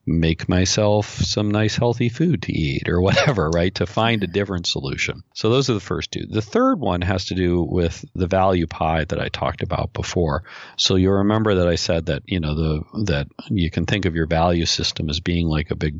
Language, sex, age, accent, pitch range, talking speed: English, male, 40-59, American, 80-100 Hz, 225 wpm